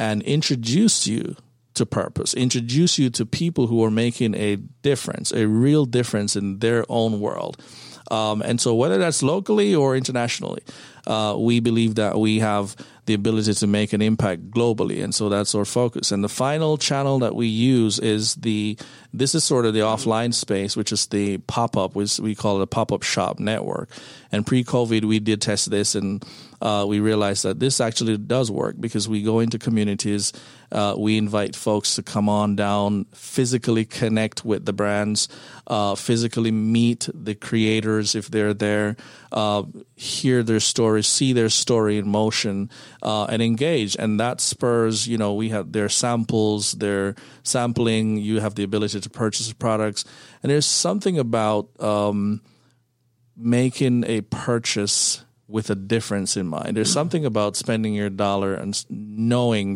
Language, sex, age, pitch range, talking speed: English, male, 50-69, 105-120 Hz, 170 wpm